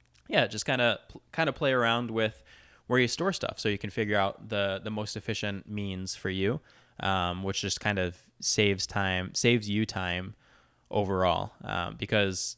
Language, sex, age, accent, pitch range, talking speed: English, male, 20-39, American, 95-115 Hz, 180 wpm